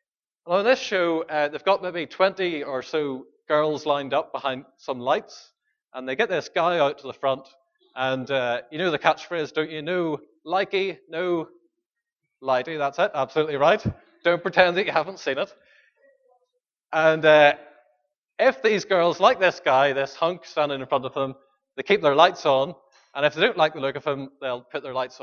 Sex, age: male, 20-39